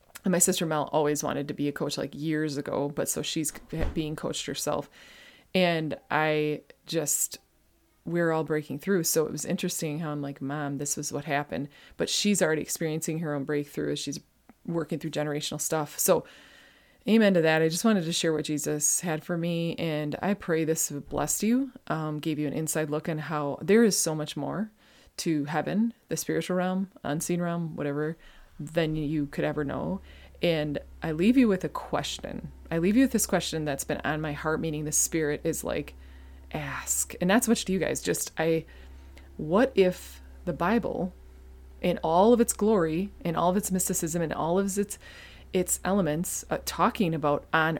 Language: English